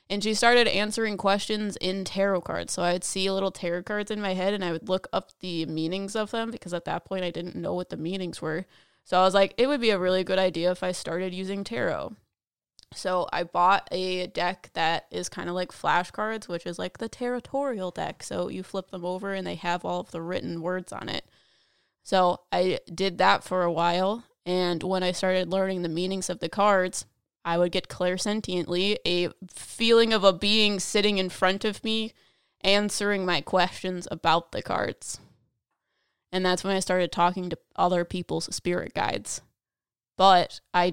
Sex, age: female, 20-39